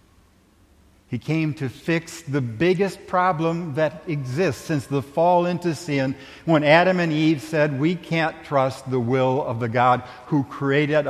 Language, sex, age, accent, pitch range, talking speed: English, male, 60-79, American, 95-140 Hz, 155 wpm